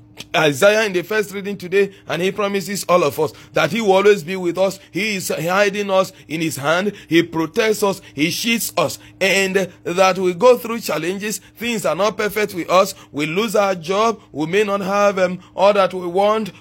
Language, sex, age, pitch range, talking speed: English, male, 30-49, 150-200 Hz, 205 wpm